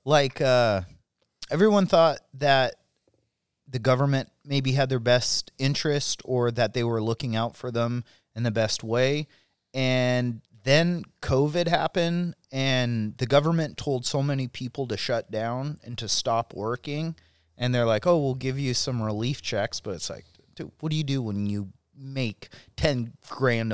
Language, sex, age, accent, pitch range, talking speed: English, male, 30-49, American, 115-145 Hz, 165 wpm